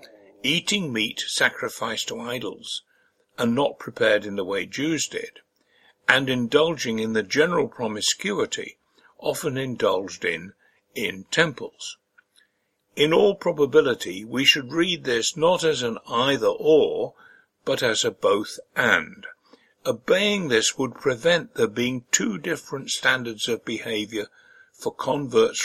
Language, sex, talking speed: English, male, 120 wpm